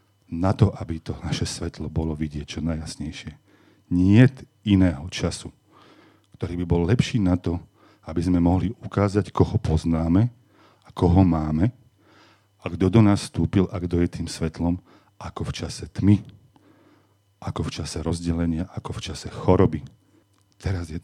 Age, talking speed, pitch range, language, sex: 40-59, 150 wpm, 85-100 Hz, Slovak, male